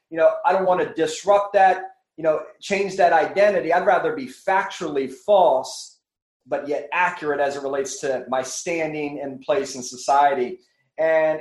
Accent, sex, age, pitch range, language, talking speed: American, male, 30-49, 145-195 Hz, English, 170 wpm